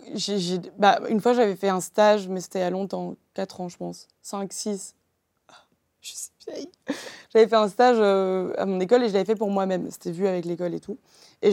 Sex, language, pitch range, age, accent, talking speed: female, French, 185-215 Hz, 20-39, French, 225 wpm